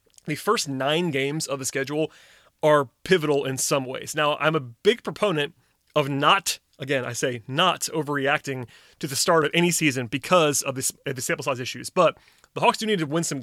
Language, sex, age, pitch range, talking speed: English, male, 30-49, 135-155 Hz, 195 wpm